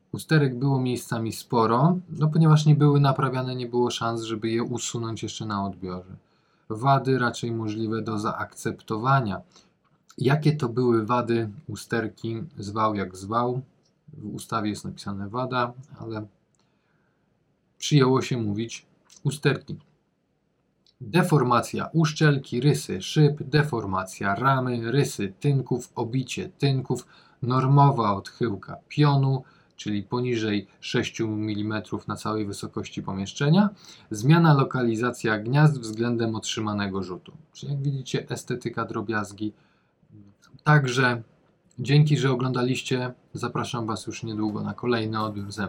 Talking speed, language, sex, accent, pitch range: 110 wpm, Polish, male, native, 110-140 Hz